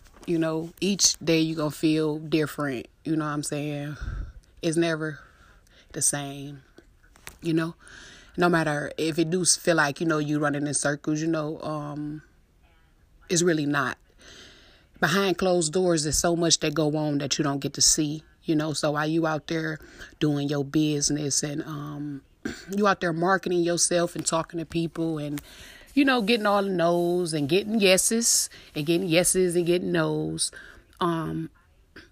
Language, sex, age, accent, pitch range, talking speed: English, female, 30-49, American, 150-185 Hz, 170 wpm